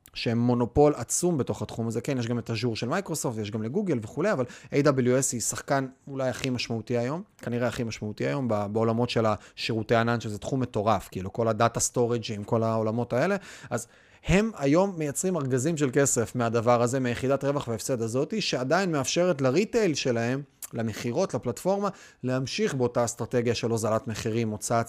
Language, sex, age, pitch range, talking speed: Hebrew, male, 30-49, 115-140 Hz, 165 wpm